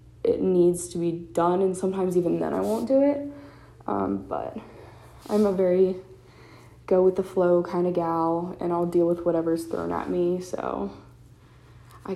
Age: 20-39